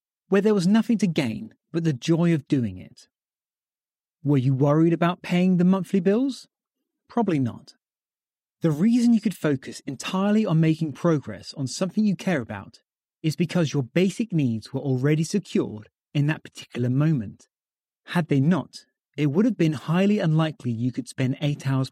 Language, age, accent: English, 30-49, British